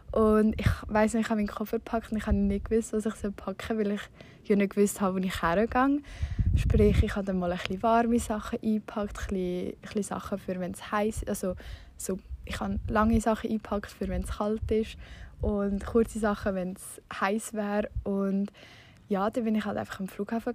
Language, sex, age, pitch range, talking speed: German, female, 20-39, 200-225 Hz, 220 wpm